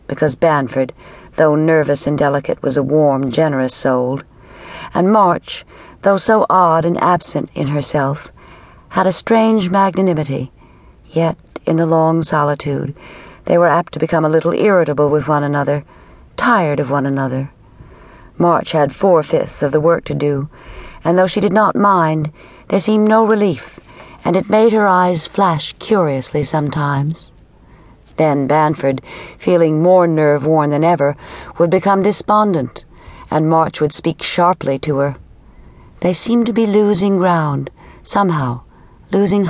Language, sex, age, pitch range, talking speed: English, female, 50-69, 145-185 Hz, 145 wpm